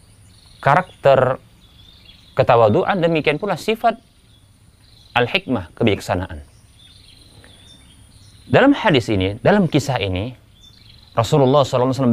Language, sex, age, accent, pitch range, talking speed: Indonesian, male, 30-49, native, 105-165 Hz, 75 wpm